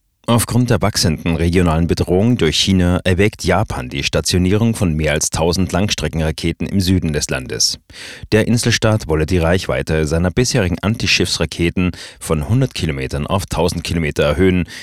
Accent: German